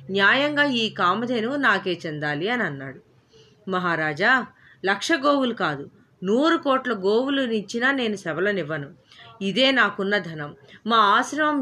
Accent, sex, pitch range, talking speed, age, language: native, female, 180-250 Hz, 115 wpm, 30-49, Telugu